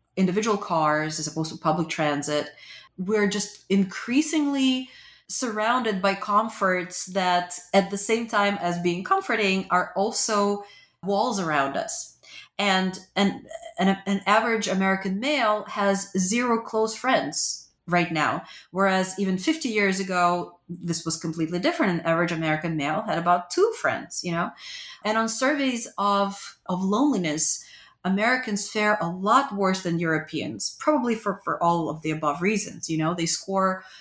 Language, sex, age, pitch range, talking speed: English, female, 30-49, 170-215 Hz, 150 wpm